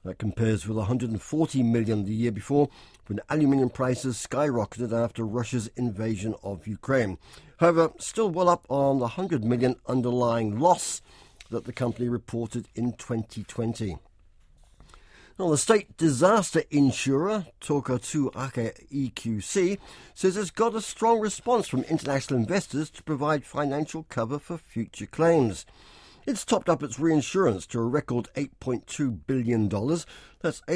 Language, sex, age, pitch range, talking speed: English, male, 60-79, 115-155 Hz, 135 wpm